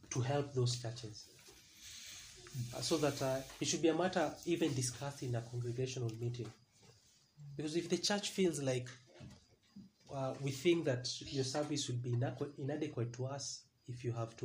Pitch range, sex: 120-145 Hz, male